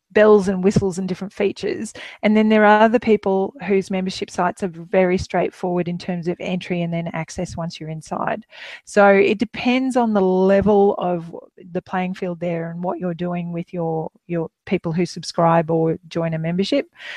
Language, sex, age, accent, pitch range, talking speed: English, female, 40-59, Australian, 170-210 Hz, 185 wpm